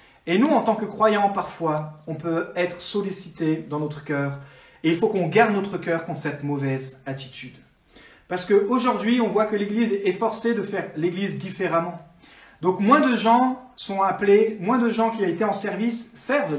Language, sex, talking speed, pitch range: French, male, 190 wpm, 150-215 Hz